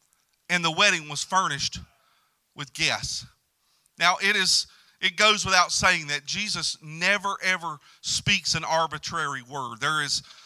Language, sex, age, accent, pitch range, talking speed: English, male, 40-59, American, 145-190 Hz, 140 wpm